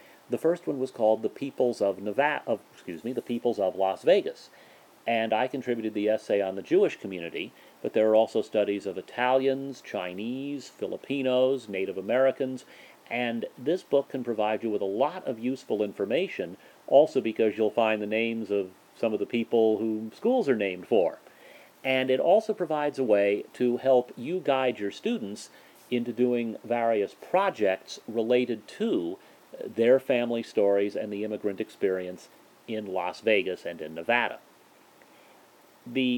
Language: English